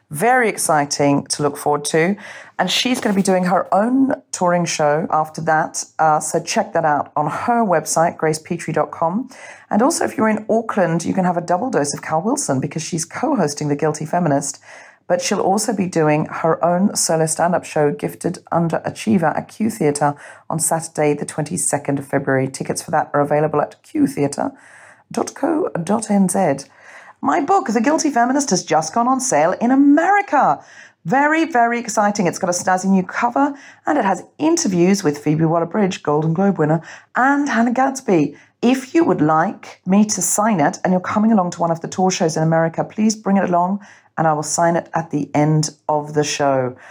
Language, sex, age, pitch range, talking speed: English, female, 40-59, 155-230 Hz, 185 wpm